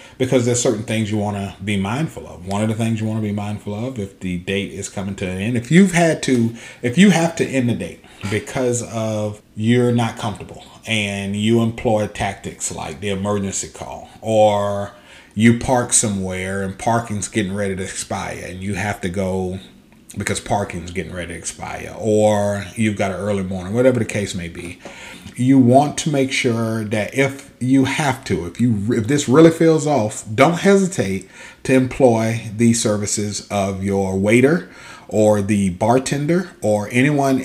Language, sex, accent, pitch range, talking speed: English, male, American, 100-130 Hz, 185 wpm